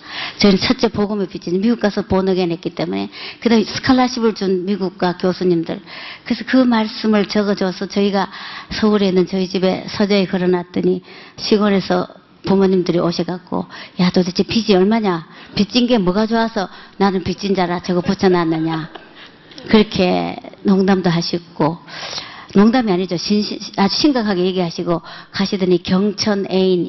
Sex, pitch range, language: male, 180-210 Hz, Korean